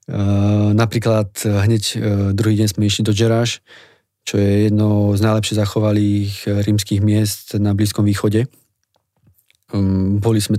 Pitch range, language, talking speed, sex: 100-110 Hz, Slovak, 120 wpm, male